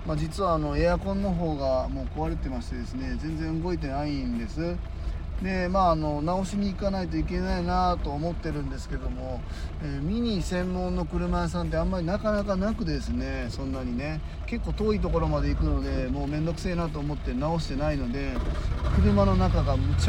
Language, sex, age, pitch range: Japanese, male, 20-39, 75-130 Hz